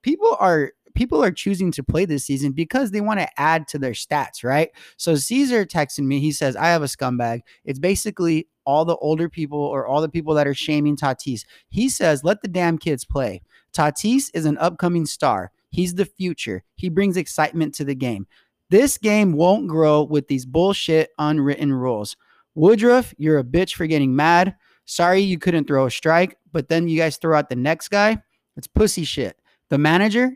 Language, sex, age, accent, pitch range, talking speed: English, male, 30-49, American, 145-200 Hz, 195 wpm